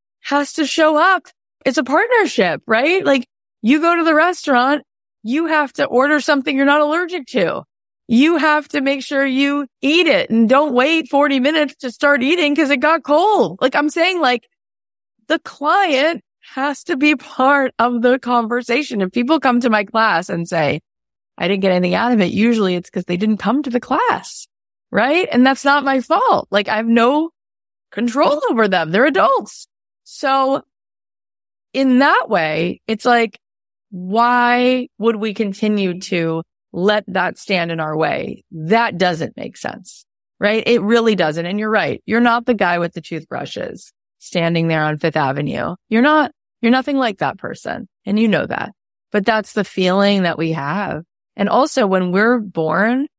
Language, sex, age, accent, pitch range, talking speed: English, female, 20-39, American, 190-285 Hz, 180 wpm